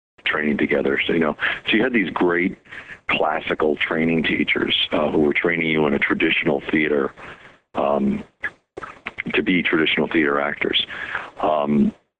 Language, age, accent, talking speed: English, 50-69, American, 145 wpm